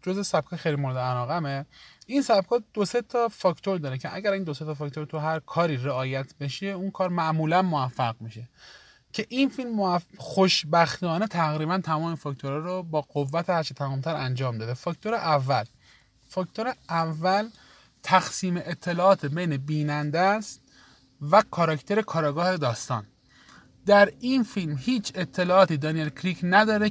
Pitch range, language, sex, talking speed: 150-200 Hz, Persian, male, 140 wpm